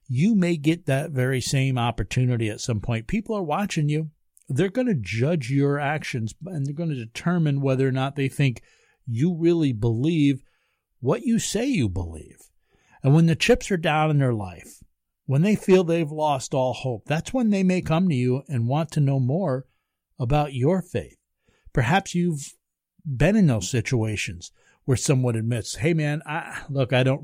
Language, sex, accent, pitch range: English, male, American, 115-160 Hz